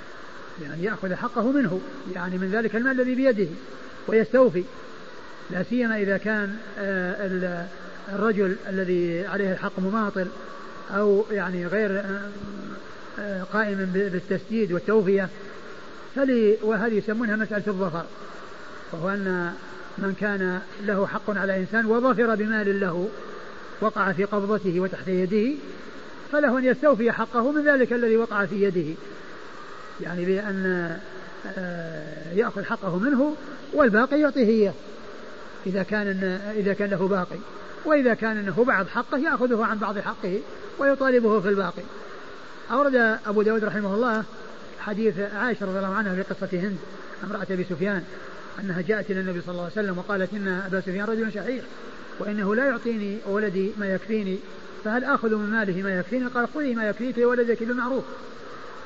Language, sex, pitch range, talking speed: Arabic, male, 190-225 Hz, 130 wpm